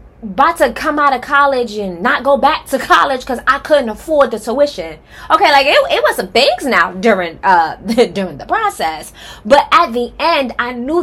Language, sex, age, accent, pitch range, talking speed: English, female, 20-39, American, 210-285 Hz, 200 wpm